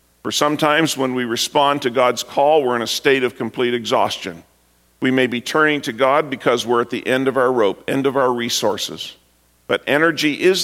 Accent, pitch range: American, 100-140 Hz